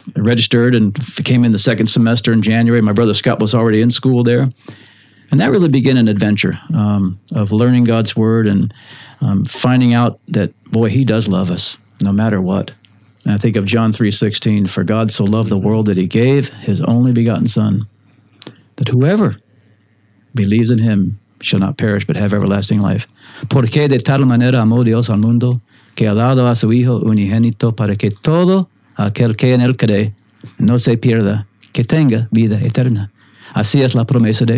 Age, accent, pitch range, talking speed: 50-69, American, 105-125 Hz, 160 wpm